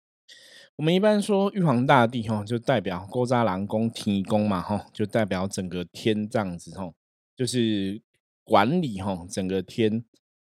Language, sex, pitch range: Chinese, male, 95-120 Hz